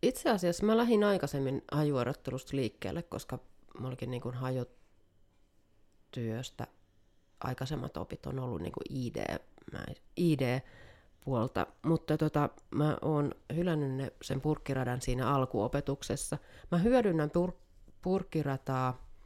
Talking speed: 105 wpm